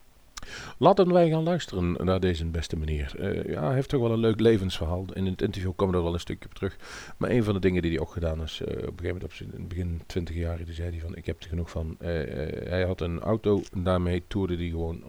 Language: Dutch